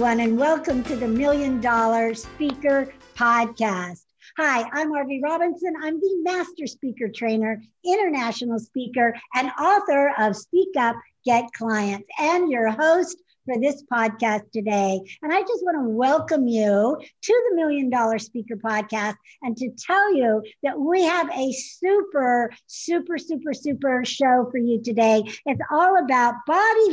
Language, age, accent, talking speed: English, 60-79, American, 145 wpm